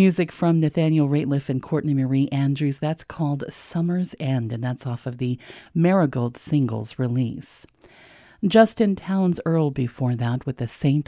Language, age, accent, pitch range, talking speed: English, 40-59, American, 130-180 Hz, 150 wpm